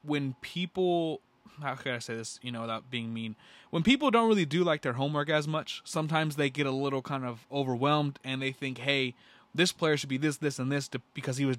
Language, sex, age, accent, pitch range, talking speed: English, male, 20-39, American, 130-170 Hz, 235 wpm